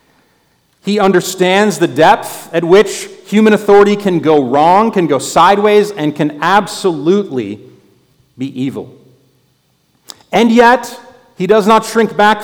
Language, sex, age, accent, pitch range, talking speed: English, male, 40-59, American, 155-220 Hz, 125 wpm